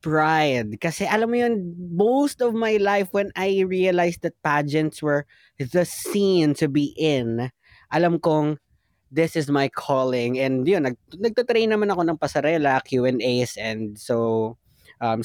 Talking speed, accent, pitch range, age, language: 145 wpm, native, 135-180 Hz, 20-39, Filipino